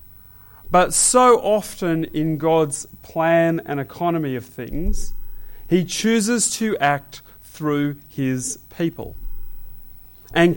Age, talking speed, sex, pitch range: 30-49, 100 wpm, male, 130-185 Hz